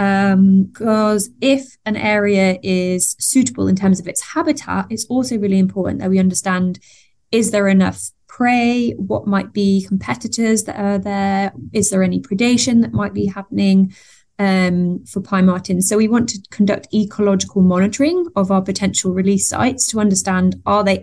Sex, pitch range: female, 185-215 Hz